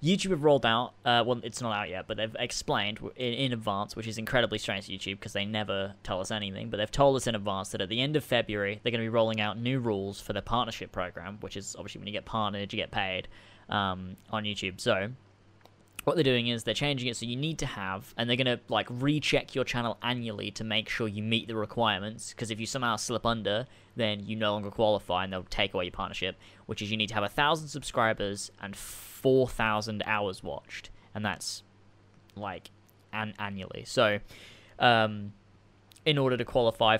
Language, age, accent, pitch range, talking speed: English, 10-29, British, 100-120 Hz, 220 wpm